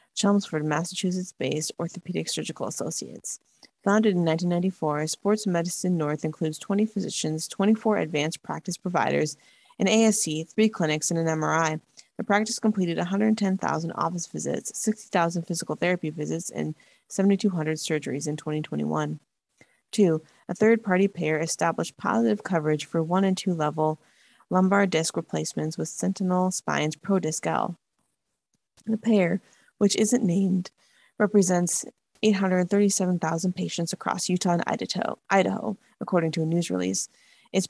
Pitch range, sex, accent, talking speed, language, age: 160-205 Hz, female, American, 120 wpm, English, 30-49